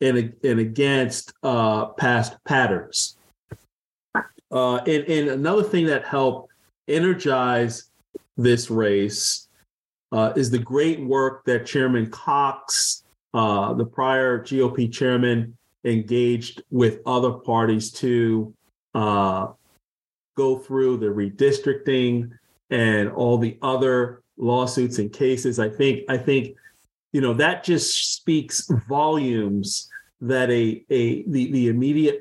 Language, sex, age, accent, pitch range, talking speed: English, male, 40-59, American, 115-135 Hz, 115 wpm